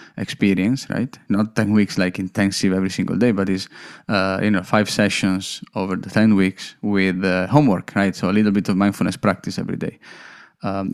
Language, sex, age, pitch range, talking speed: English, male, 20-39, 100-120 Hz, 190 wpm